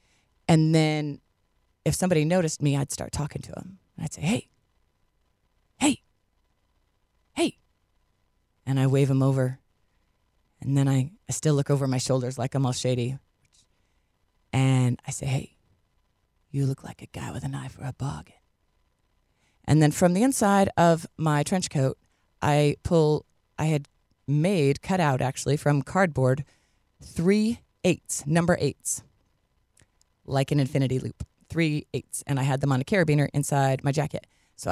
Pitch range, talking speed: 100-150 Hz, 155 wpm